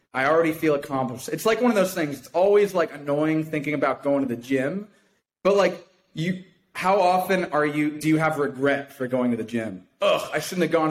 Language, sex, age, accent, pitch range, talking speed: English, male, 30-49, American, 140-185 Hz, 225 wpm